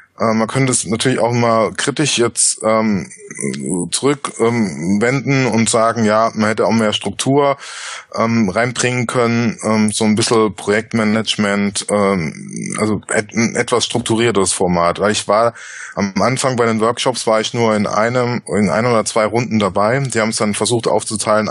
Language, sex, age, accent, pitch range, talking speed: German, male, 20-39, German, 105-120 Hz, 165 wpm